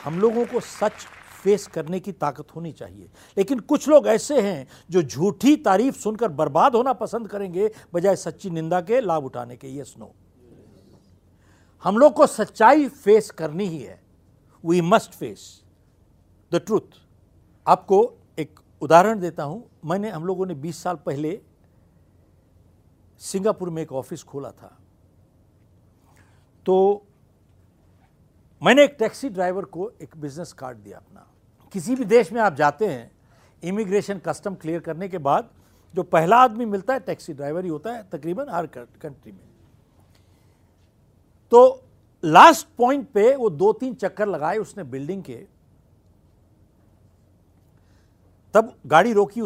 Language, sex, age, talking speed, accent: Hindi, male, 60-79, 140 wpm, native